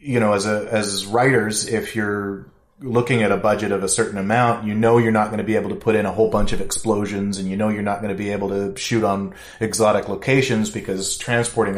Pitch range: 100-120 Hz